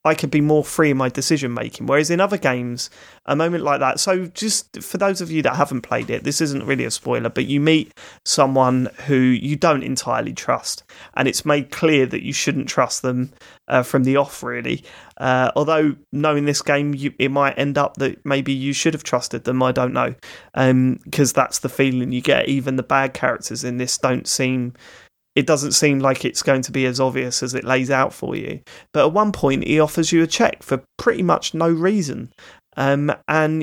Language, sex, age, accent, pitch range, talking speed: English, male, 30-49, British, 130-160 Hz, 215 wpm